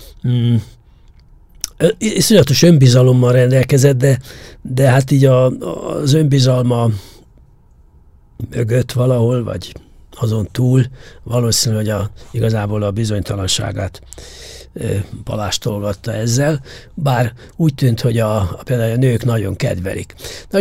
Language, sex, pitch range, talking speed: English, male, 115-140 Hz, 110 wpm